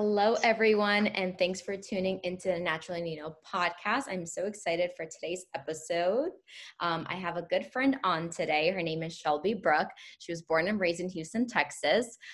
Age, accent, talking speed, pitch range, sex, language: 10-29, American, 185 wpm, 160-195 Hz, female, English